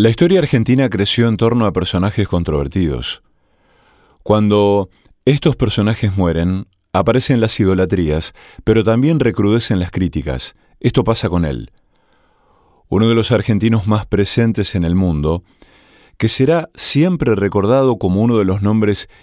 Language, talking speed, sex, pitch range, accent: Spanish, 135 wpm, male, 90-115 Hz, Argentinian